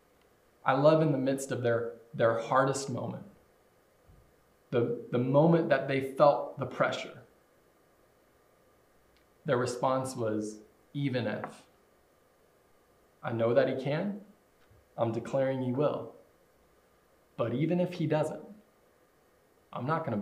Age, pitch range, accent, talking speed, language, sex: 20-39, 120-150 Hz, American, 120 wpm, English, male